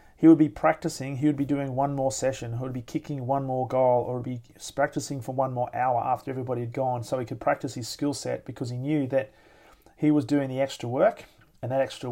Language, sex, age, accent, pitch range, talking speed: English, male, 30-49, Australian, 125-145 Hz, 250 wpm